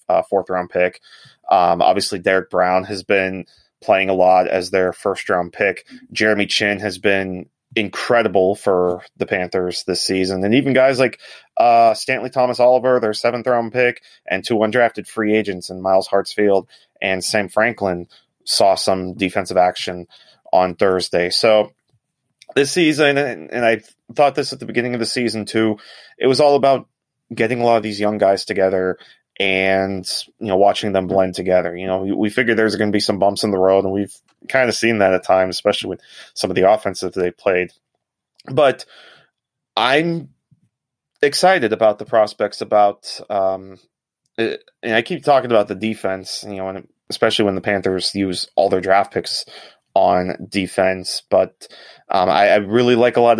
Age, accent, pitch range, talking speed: 30-49, American, 95-120 Hz, 180 wpm